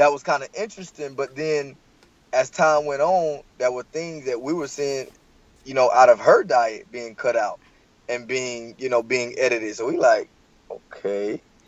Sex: male